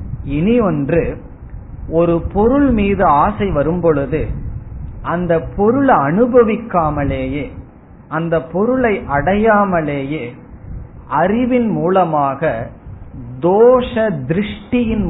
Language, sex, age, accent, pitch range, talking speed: Tamil, male, 50-69, native, 125-180 Hz, 70 wpm